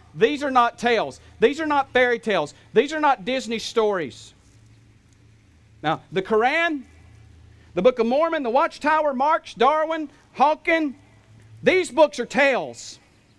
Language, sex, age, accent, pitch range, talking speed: English, male, 40-59, American, 220-290 Hz, 135 wpm